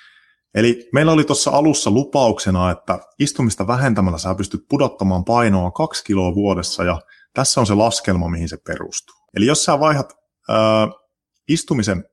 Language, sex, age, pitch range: Finnish, male, 30-49, 95-125 Hz